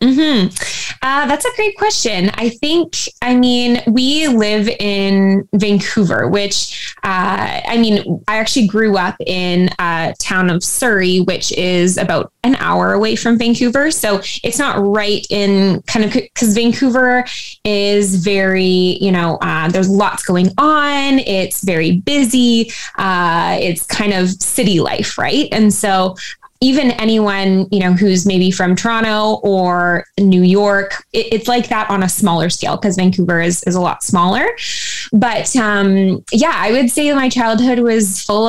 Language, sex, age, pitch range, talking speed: English, female, 20-39, 185-230 Hz, 155 wpm